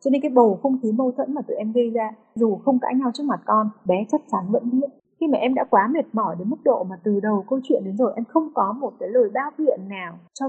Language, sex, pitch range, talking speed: Vietnamese, female, 200-265 Hz, 295 wpm